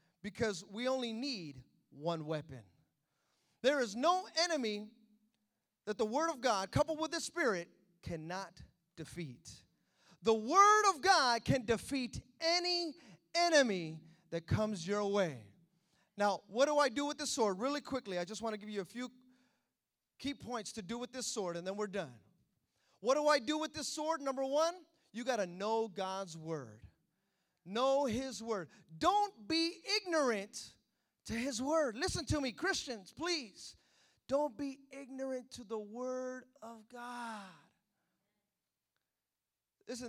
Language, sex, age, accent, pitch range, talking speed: English, male, 30-49, American, 175-275 Hz, 150 wpm